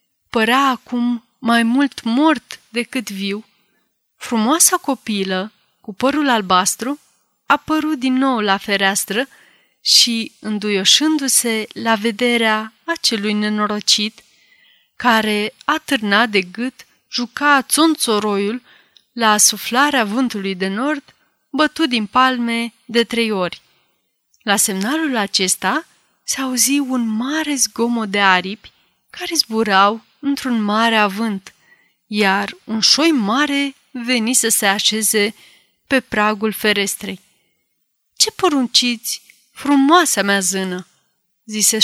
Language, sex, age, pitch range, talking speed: Romanian, female, 30-49, 210-265 Hz, 105 wpm